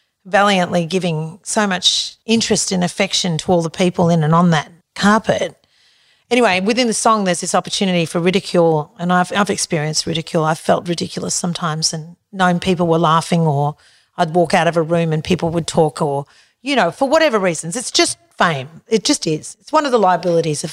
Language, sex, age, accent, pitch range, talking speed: English, female, 40-59, Australian, 170-210 Hz, 195 wpm